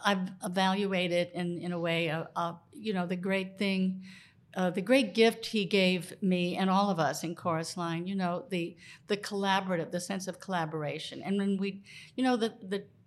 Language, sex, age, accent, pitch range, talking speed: English, female, 60-79, American, 170-200 Hz, 195 wpm